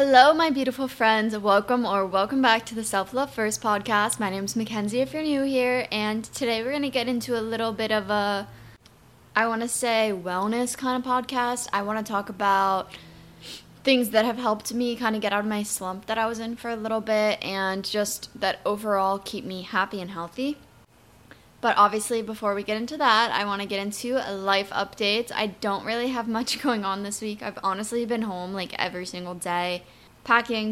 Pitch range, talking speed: 195-225 Hz, 210 wpm